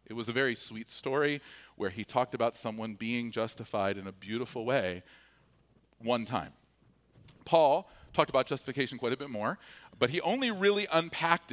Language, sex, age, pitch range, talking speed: English, male, 40-59, 120-195 Hz, 165 wpm